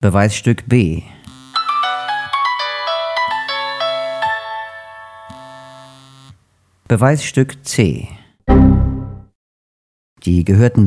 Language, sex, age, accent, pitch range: German, male, 50-69, German, 90-110 Hz